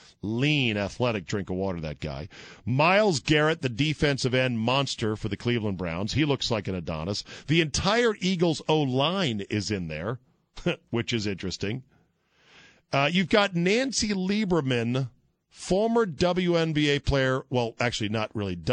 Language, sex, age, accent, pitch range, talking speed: English, male, 50-69, American, 105-155 Hz, 140 wpm